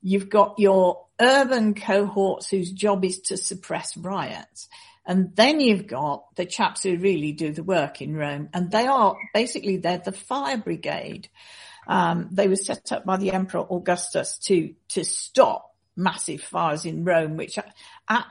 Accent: British